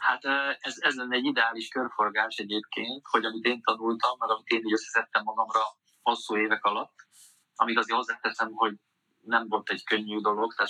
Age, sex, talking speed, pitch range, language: 20-39, male, 180 wpm, 105-130 Hz, Hungarian